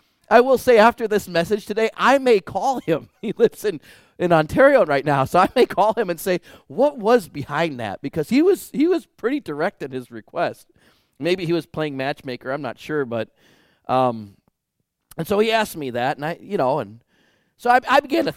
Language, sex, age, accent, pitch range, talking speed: English, male, 30-49, American, 115-185 Hz, 210 wpm